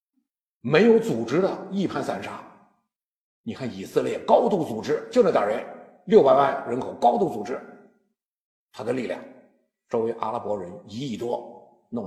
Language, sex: Chinese, male